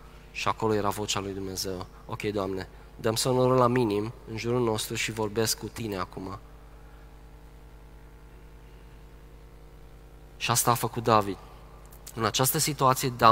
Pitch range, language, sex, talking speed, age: 110-150 Hz, Romanian, male, 125 wpm, 20-39